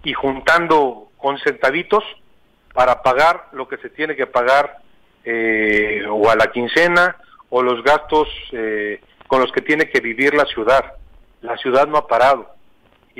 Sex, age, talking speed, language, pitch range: male, 40-59, 160 wpm, Spanish, 120-150 Hz